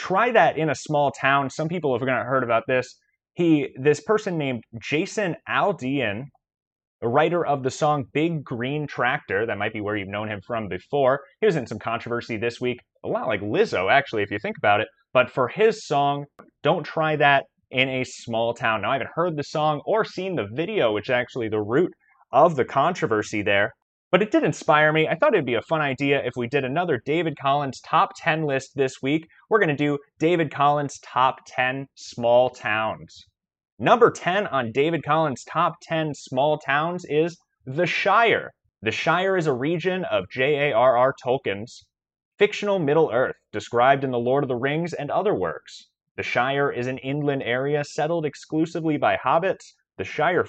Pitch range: 125-155 Hz